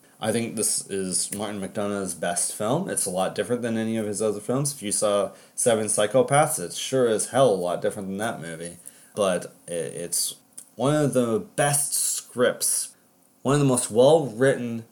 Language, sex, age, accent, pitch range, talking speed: English, male, 30-49, American, 115-165 Hz, 185 wpm